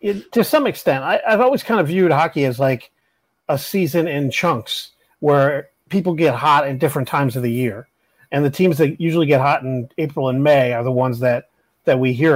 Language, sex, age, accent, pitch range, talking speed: English, male, 40-59, American, 140-180 Hz, 220 wpm